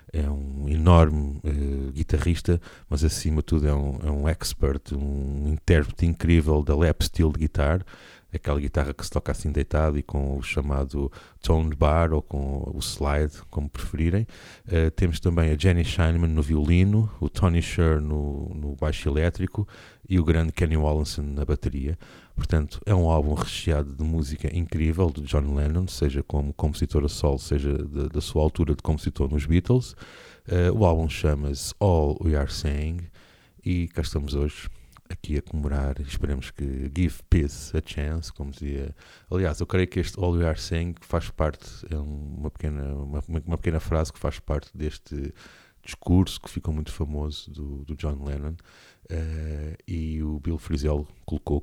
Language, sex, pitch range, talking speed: Portuguese, male, 75-85 Hz, 170 wpm